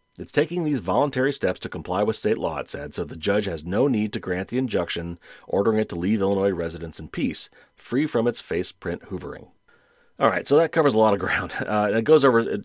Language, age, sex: English, 40-59, male